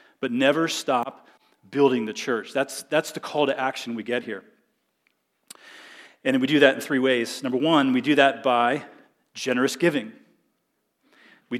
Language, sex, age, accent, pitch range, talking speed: English, male, 40-59, American, 115-135 Hz, 160 wpm